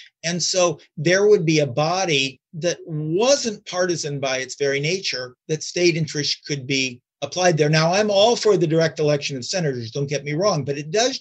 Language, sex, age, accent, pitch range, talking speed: English, male, 50-69, American, 150-200 Hz, 200 wpm